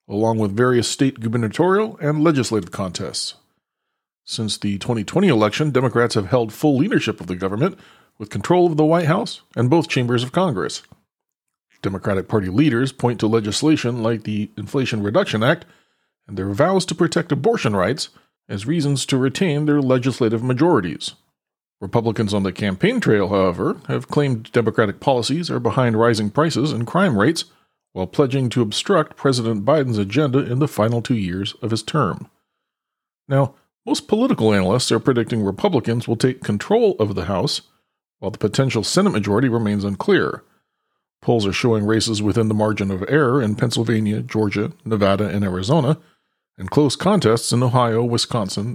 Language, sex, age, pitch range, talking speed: English, male, 40-59, 110-145 Hz, 160 wpm